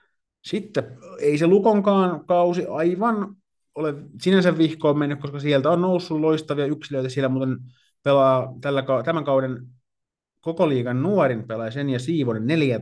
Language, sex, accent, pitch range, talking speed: Finnish, male, native, 120-155 Hz, 125 wpm